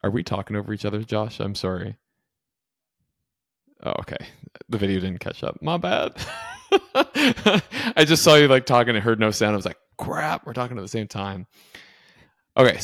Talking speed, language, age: 180 wpm, English, 20-39